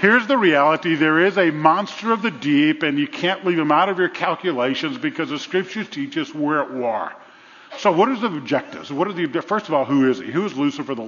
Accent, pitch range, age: American, 140-185 Hz, 50-69